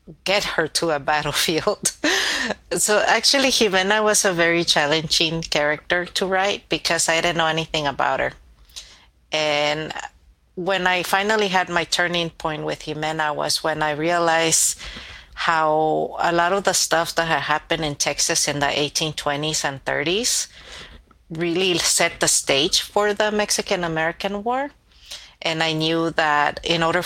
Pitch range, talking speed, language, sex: 150-170 Hz, 145 wpm, English, female